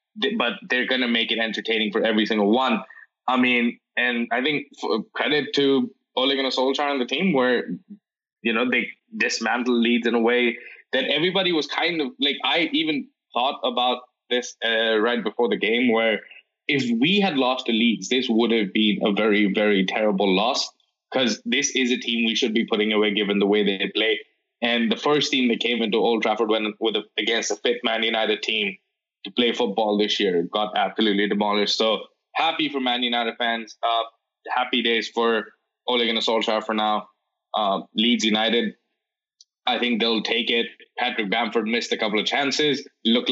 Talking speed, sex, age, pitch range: 190 wpm, male, 20-39, 110-130 Hz